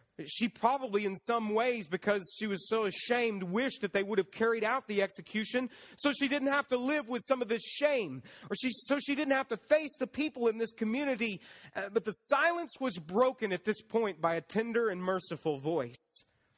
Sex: male